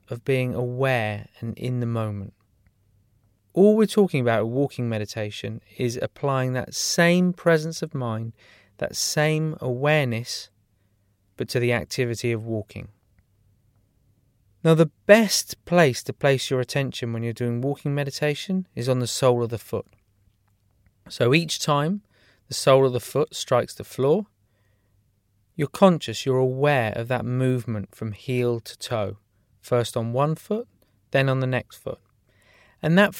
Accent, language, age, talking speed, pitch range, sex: British, English, 30-49, 150 wpm, 110-150 Hz, male